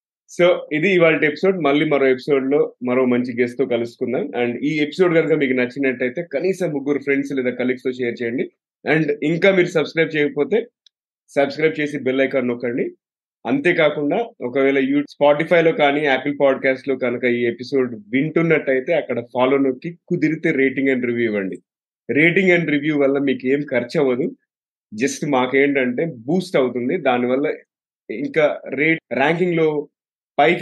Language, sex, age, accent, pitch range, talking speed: Telugu, male, 30-49, native, 130-160 Hz, 135 wpm